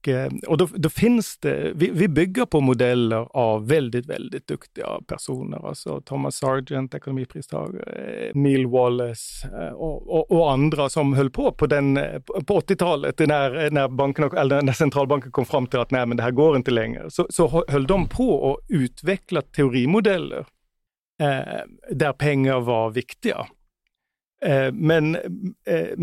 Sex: male